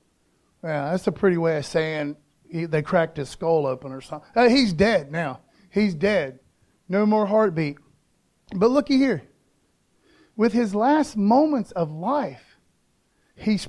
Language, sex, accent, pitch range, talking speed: English, male, American, 160-235 Hz, 140 wpm